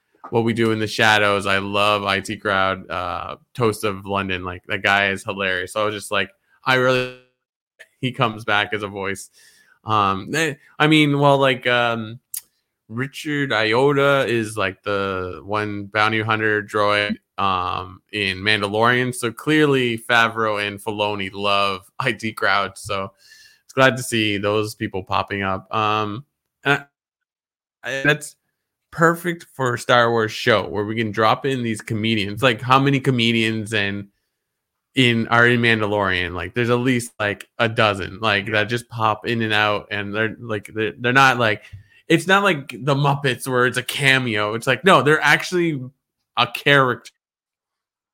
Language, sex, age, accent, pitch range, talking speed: English, male, 20-39, American, 105-130 Hz, 165 wpm